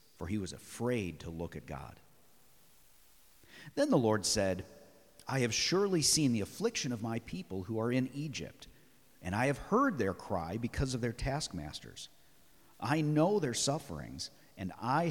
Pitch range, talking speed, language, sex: 95-140 Hz, 165 wpm, English, male